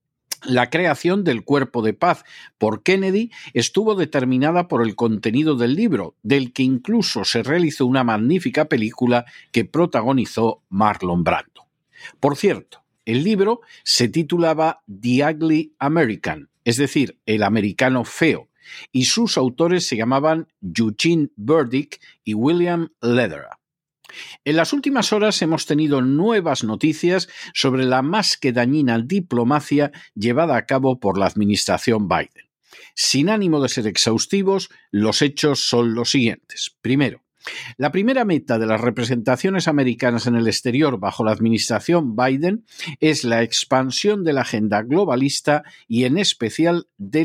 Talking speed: 135 wpm